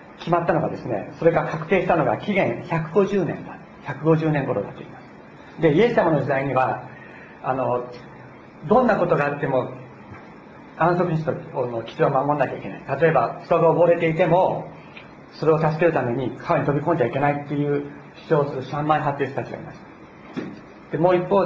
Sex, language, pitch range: male, Japanese, 145-190 Hz